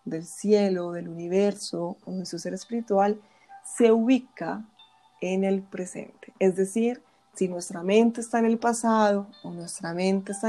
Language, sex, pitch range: Spanish, female, 185-225 Hz